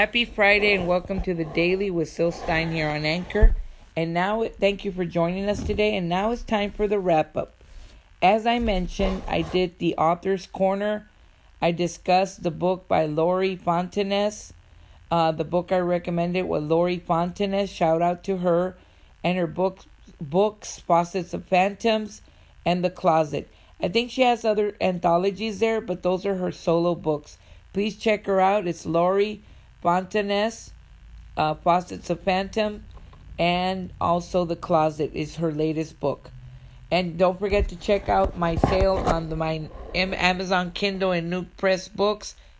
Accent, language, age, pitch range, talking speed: American, English, 50-69, 165-195 Hz, 160 wpm